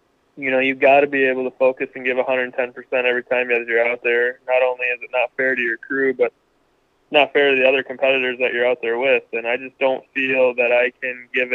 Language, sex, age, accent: English, male, 20-39, American